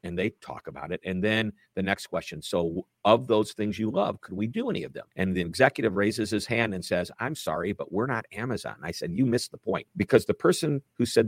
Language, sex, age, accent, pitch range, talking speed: English, male, 50-69, American, 95-115 Hz, 250 wpm